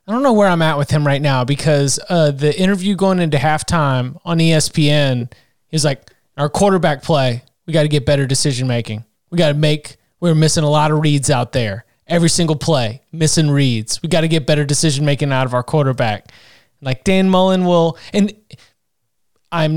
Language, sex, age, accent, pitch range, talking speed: English, male, 20-39, American, 145-180 Hz, 190 wpm